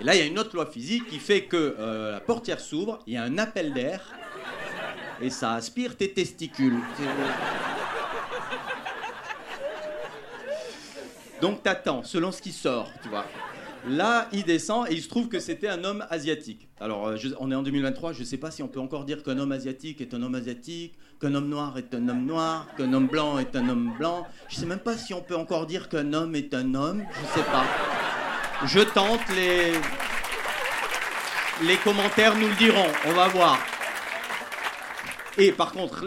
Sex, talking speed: male, 195 wpm